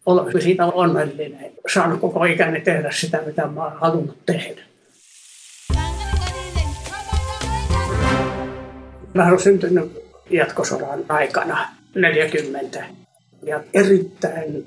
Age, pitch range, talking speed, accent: 60-79, 150-180 Hz, 80 wpm, native